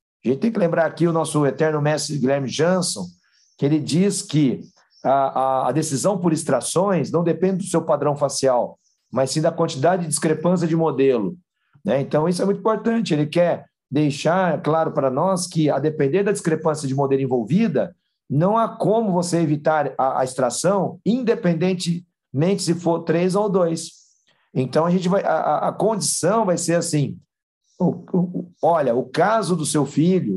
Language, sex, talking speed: Portuguese, male, 170 wpm